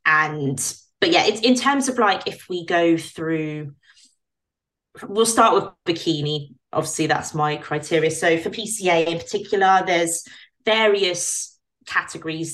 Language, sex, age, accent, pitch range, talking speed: English, female, 20-39, British, 160-195 Hz, 140 wpm